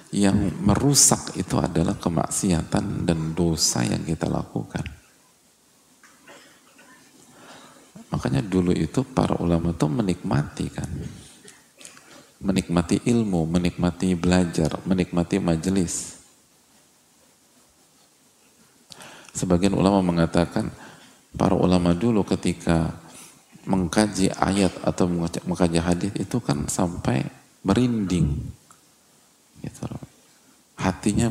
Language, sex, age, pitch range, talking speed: English, male, 40-59, 85-110 Hz, 80 wpm